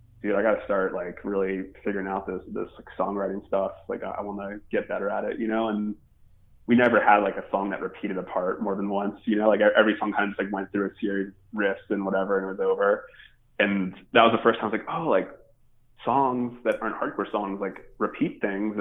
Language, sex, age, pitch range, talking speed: English, male, 20-39, 95-115 Hz, 245 wpm